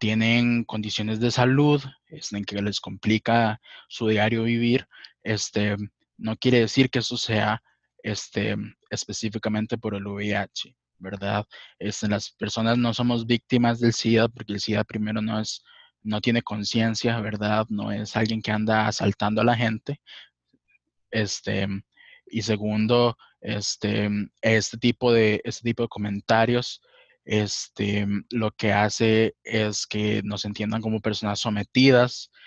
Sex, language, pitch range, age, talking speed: male, Spanish, 105-120 Hz, 20-39, 135 wpm